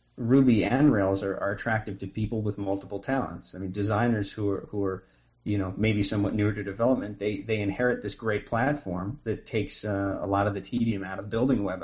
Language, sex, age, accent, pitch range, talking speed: English, male, 30-49, American, 100-115 Hz, 220 wpm